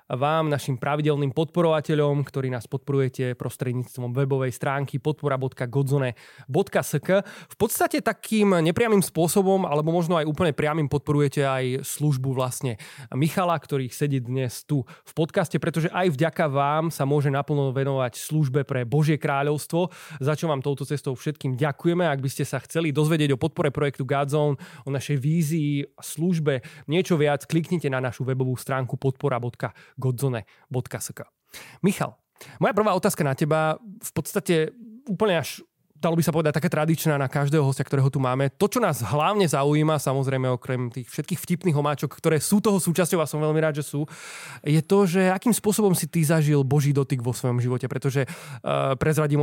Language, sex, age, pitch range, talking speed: Slovak, male, 20-39, 135-165 Hz, 165 wpm